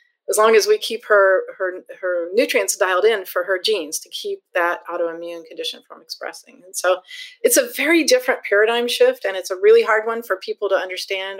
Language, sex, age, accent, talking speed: English, female, 40-59, American, 205 wpm